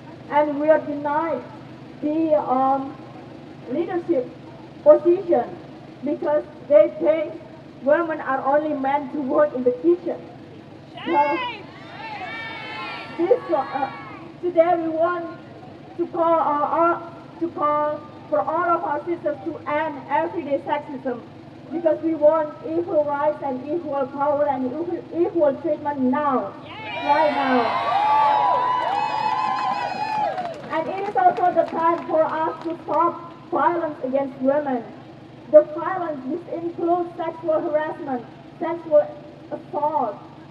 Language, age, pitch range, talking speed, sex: English, 40-59, 285-335 Hz, 115 wpm, female